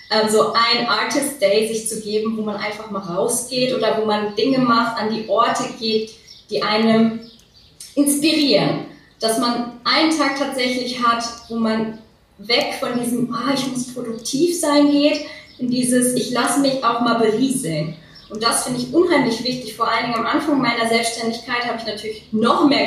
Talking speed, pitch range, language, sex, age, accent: 175 wpm, 205-250 Hz, German, female, 20-39, German